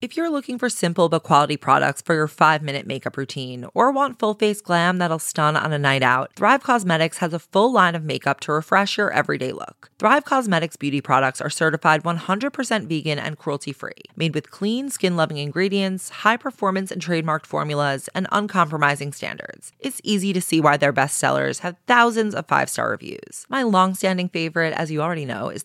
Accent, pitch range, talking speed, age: American, 150-210 Hz, 180 wpm, 30-49